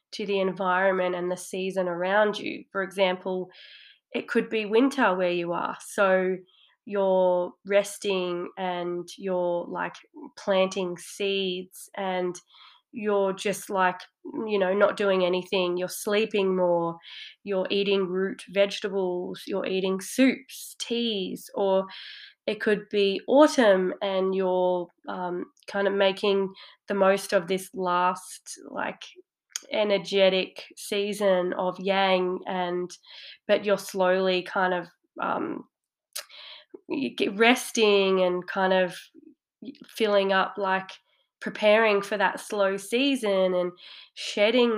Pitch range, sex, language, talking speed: 185-205 Hz, female, English, 120 wpm